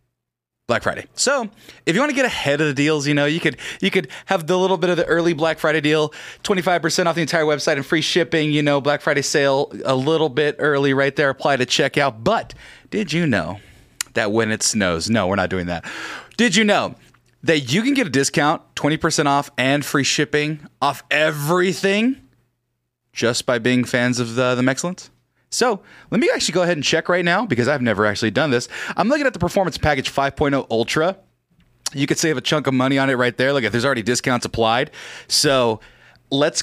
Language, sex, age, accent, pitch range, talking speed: English, male, 20-39, American, 125-170 Hz, 215 wpm